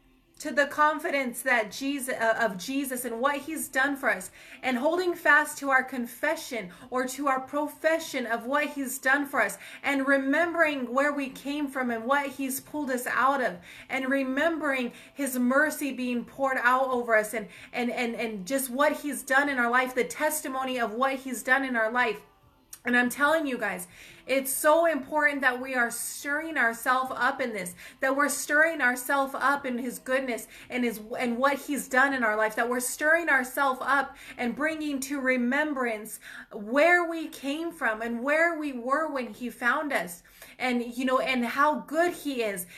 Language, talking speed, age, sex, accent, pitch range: English, 190 wpm, 30-49, female, American, 245-295 Hz